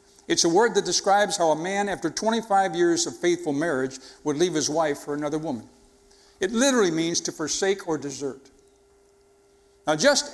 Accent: American